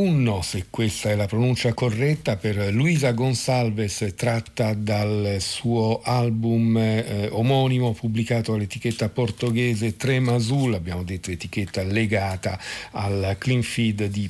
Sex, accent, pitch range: male, native, 105-120 Hz